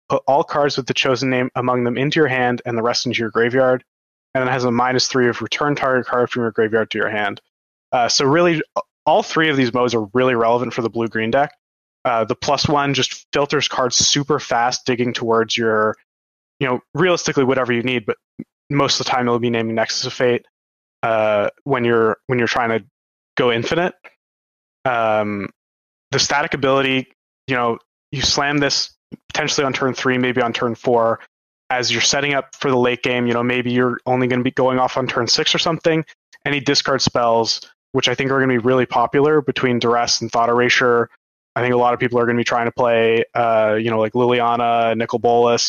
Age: 20-39